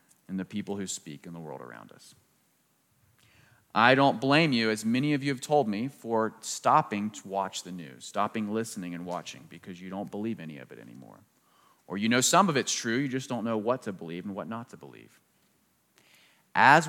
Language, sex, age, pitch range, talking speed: English, male, 30-49, 100-135 Hz, 210 wpm